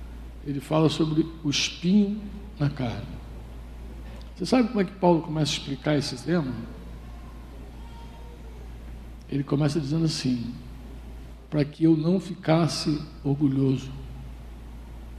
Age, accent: 60-79, Brazilian